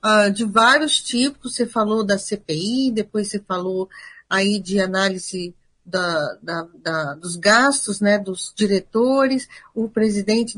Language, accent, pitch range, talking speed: Portuguese, Brazilian, 215-270 Hz, 115 wpm